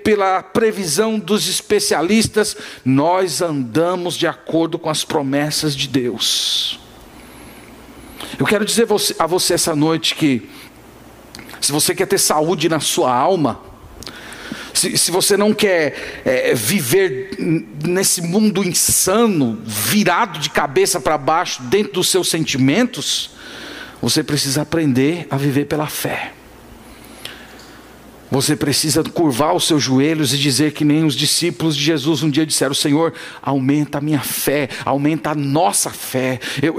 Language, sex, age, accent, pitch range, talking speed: Portuguese, male, 50-69, Brazilian, 150-205 Hz, 130 wpm